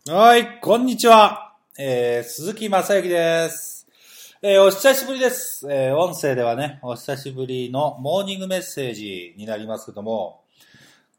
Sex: male